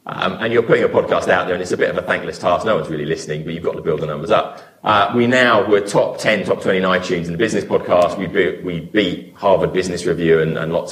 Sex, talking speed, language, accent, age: male, 280 wpm, English, British, 30-49